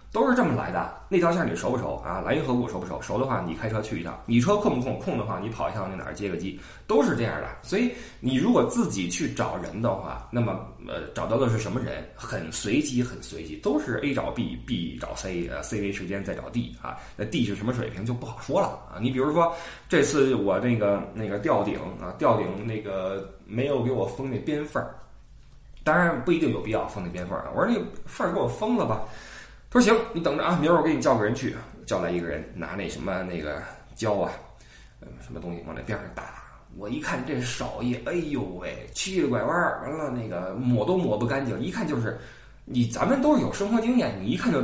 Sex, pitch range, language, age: male, 95-150 Hz, Chinese, 20-39